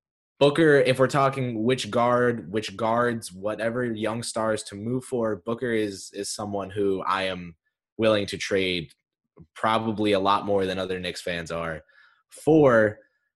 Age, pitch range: 20-39, 100-120 Hz